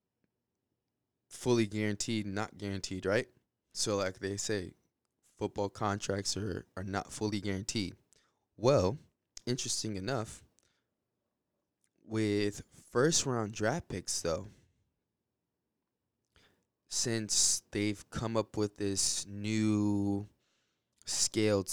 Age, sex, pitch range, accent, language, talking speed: 20-39, male, 95-110 Hz, American, English, 90 wpm